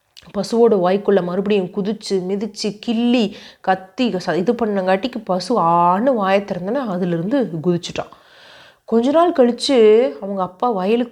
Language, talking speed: Tamil, 110 wpm